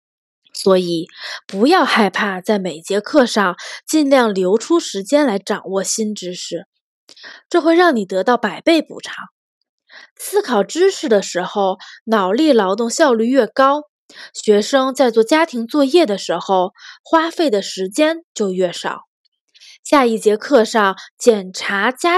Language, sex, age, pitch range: Chinese, female, 20-39, 195-275 Hz